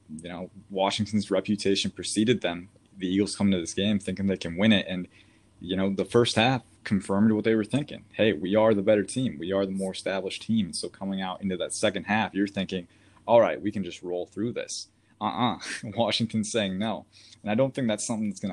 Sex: male